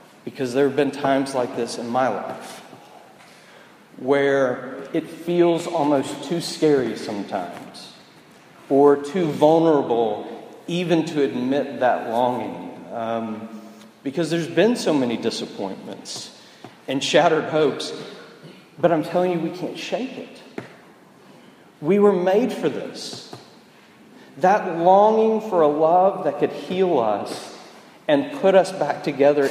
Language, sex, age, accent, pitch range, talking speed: English, male, 40-59, American, 130-180 Hz, 125 wpm